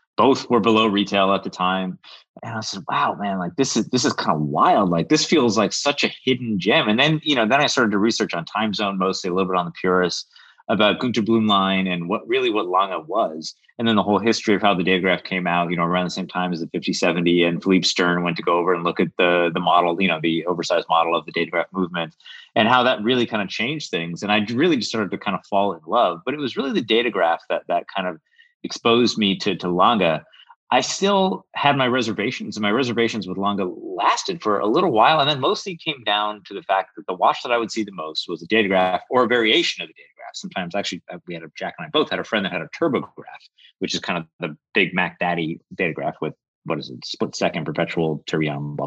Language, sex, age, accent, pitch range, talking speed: English, male, 30-49, American, 90-120 Hz, 260 wpm